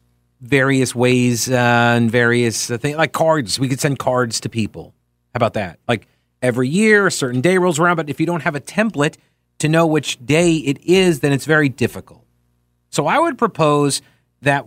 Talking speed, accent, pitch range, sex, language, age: 195 wpm, American, 115-155 Hz, male, English, 40-59